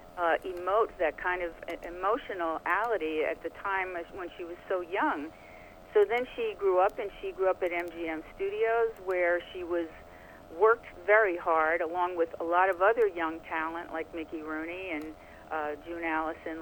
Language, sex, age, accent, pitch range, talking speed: English, female, 50-69, American, 165-200 Hz, 175 wpm